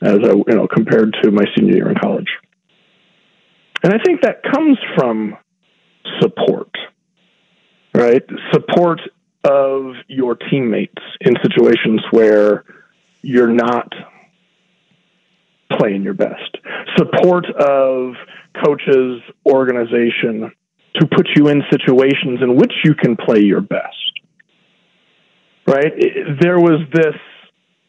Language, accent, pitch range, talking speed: English, American, 125-180 Hz, 110 wpm